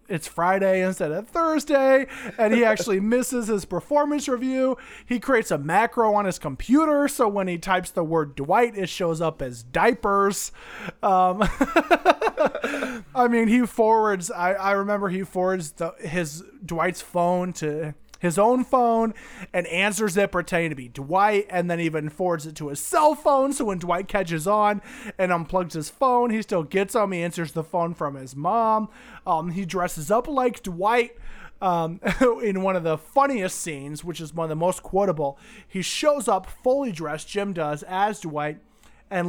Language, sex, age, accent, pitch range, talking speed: English, male, 20-39, American, 170-225 Hz, 175 wpm